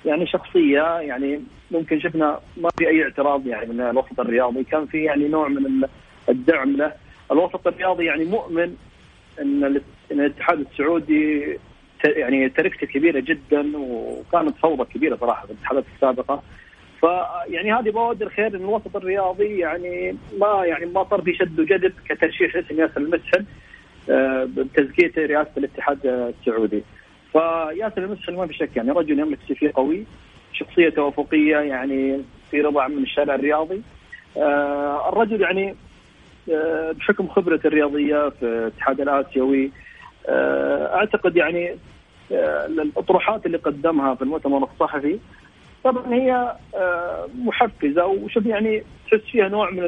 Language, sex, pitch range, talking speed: Arabic, male, 145-190 Hz, 125 wpm